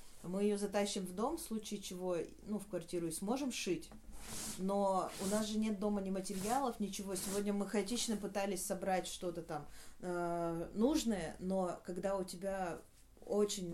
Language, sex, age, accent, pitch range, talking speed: Russian, female, 30-49, native, 175-210 Hz, 160 wpm